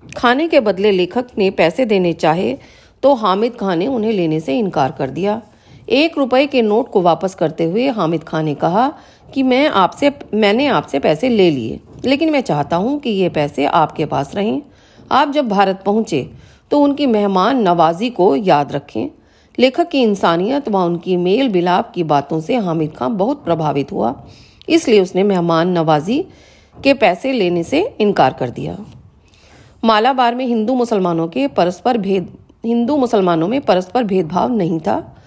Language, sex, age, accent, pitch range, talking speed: Hindi, female, 40-59, native, 170-250 Hz, 165 wpm